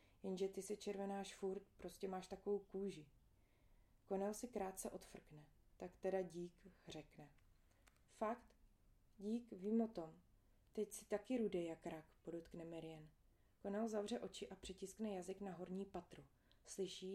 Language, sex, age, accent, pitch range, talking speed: Czech, female, 30-49, native, 165-210 Hz, 140 wpm